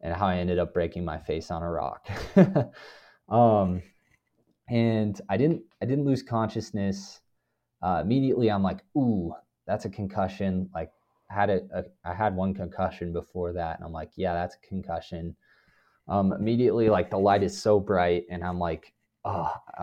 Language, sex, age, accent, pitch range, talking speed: English, male, 20-39, American, 85-105 Hz, 165 wpm